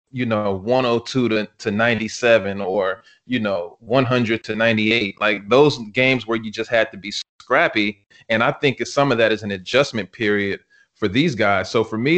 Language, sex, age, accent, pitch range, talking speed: English, male, 20-39, American, 105-125 Hz, 185 wpm